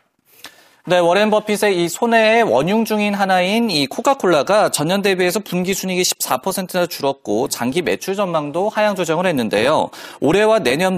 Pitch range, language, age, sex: 150-215 Hz, Korean, 30-49, male